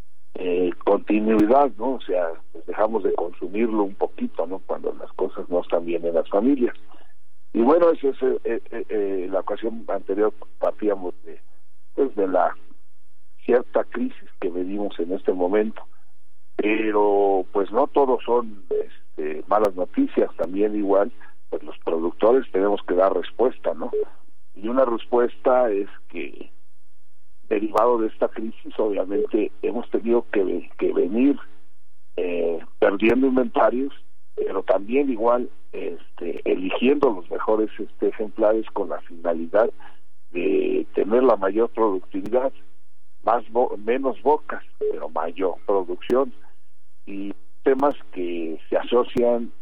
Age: 50-69